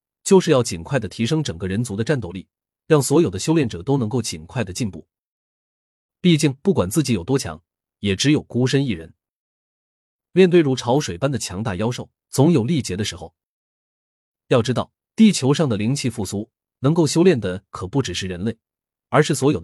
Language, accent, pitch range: Chinese, native, 100-150 Hz